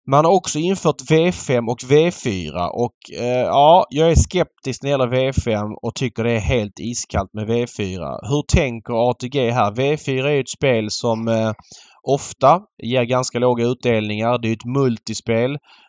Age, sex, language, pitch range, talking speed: 20-39, male, Swedish, 105-125 Hz, 160 wpm